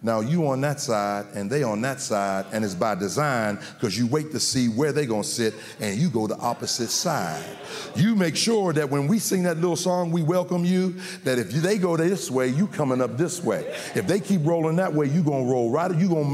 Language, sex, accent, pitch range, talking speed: English, male, American, 105-155 Hz, 240 wpm